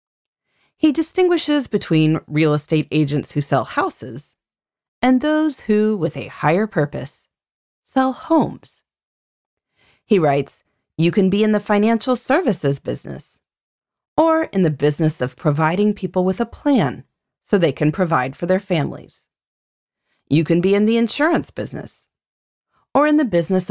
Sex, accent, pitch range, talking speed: female, American, 155-240 Hz, 140 wpm